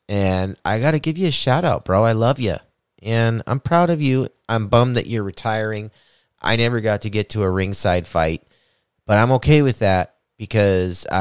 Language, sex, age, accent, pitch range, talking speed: English, male, 30-49, American, 95-125 Hz, 205 wpm